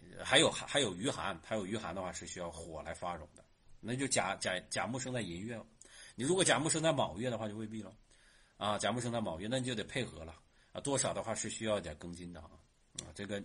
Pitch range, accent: 105-165 Hz, native